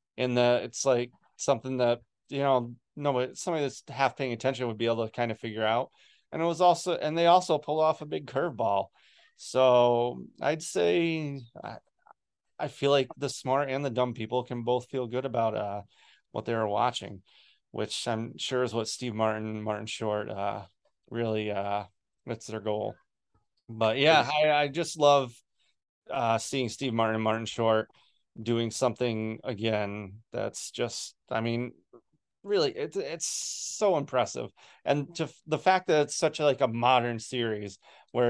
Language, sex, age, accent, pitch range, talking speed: English, male, 30-49, American, 115-145 Hz, 170 wpm